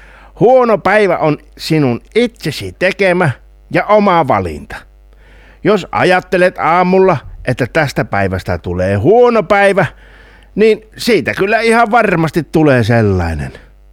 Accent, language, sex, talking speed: native, Finnish, male, 110 wpm